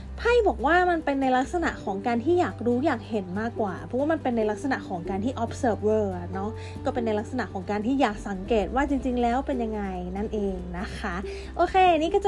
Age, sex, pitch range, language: 20-39, female, 215-275 Hz, Thai